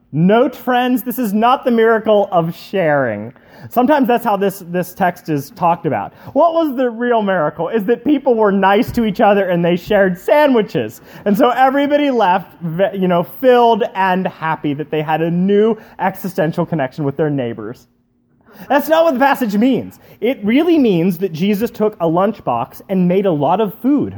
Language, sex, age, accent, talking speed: English, male, 30-49, American, 185 wpm